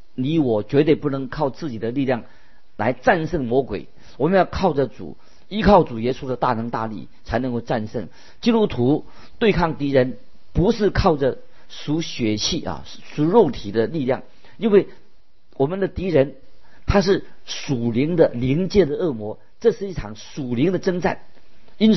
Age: 50-69